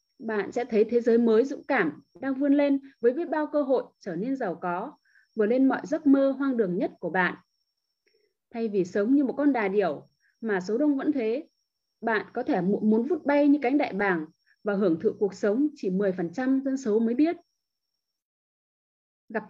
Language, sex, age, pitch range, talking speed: Vietnamese, female, 20-39, 210-285 Hz, 200 wpm